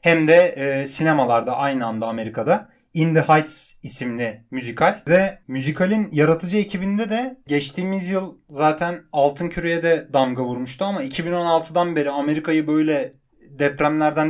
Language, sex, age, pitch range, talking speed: Turkish, male, 30-49, 140-175 Hz, 130 wpm